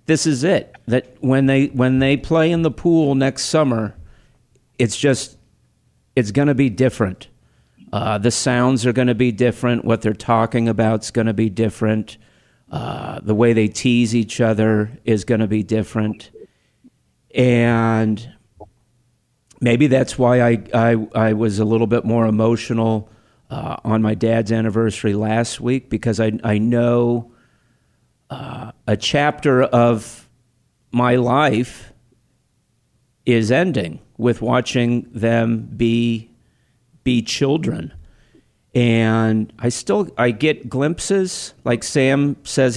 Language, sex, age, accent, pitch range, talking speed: English, male, 50-69, American, 110-130 Hz, 135 wpm